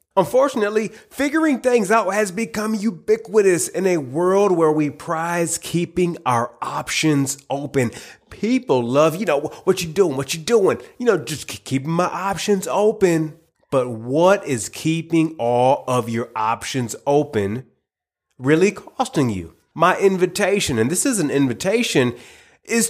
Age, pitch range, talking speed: 30-49, 125-185 Hz, 140 wpm